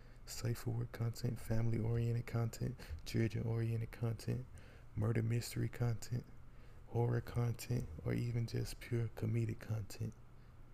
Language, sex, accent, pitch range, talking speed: English, male, American, 105-115 Hz, 115 wpm